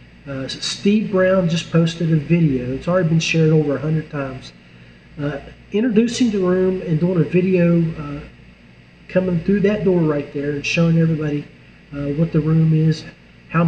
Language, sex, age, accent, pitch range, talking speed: English, male, 40-59, American, 140-170 Hz, 165 wpm